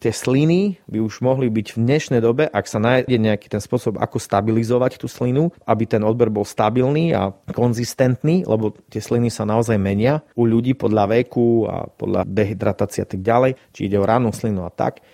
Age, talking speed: 30-49, 195 wpm